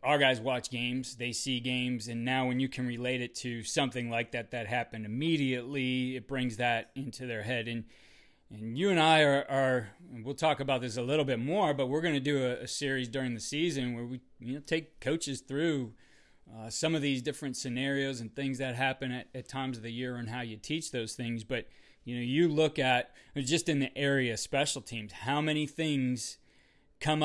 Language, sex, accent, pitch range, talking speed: English, male, American, 125-145 Hz, 220 wpm